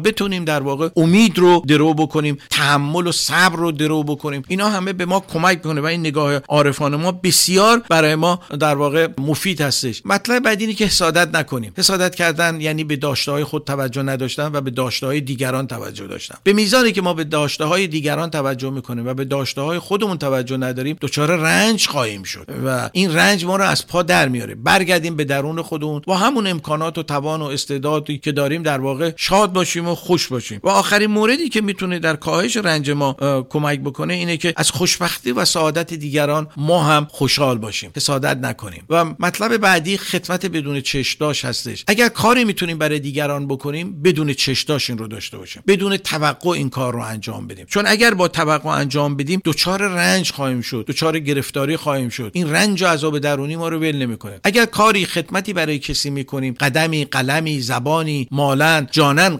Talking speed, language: 180 wpm, Persian